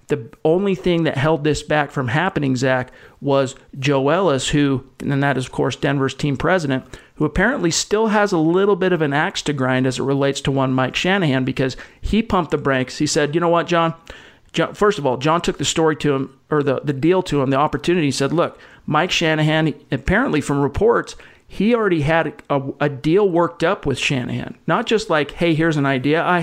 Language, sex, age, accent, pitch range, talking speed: English, male, 50-69, American, 140-165 Hz, 215 wpm